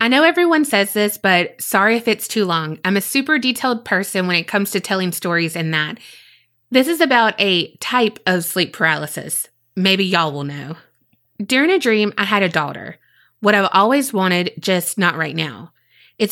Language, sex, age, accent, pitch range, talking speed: English, female, 20-39, American, 170-225 Hz, 190 wpm